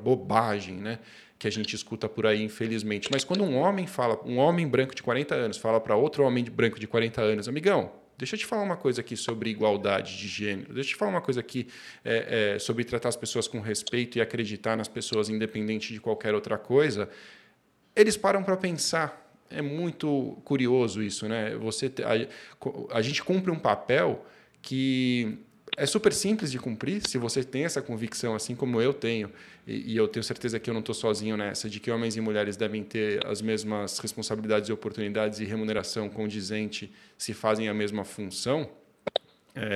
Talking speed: 185 wpm